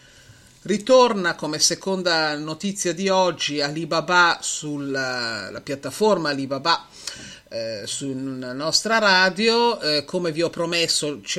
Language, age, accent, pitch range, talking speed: Italian, 40-59, native, 135-190 Hz, 105 wpm